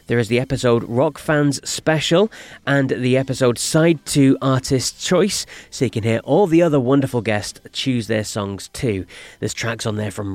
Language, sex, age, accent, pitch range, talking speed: English, male, 30-49, British, 115-155 Hz, 185 wpm